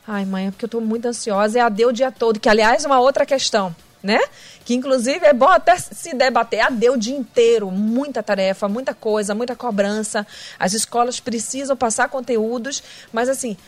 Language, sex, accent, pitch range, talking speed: Portuguese, female, Brazilian, 220-290 Hz, 195 wpm